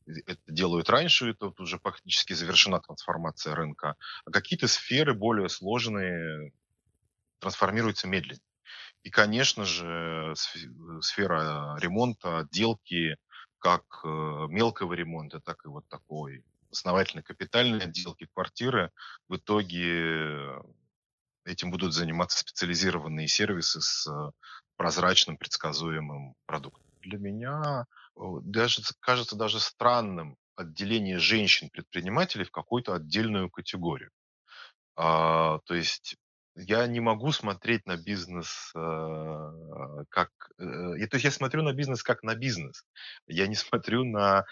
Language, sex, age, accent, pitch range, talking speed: Russian, male, 30-49, native, 80-110 Hz, 110 wpm